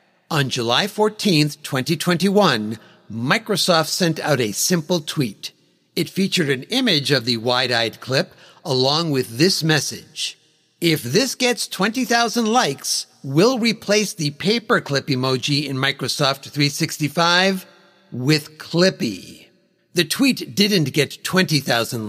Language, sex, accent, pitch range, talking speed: English, male, American, 145-205 Hz, 115 wpm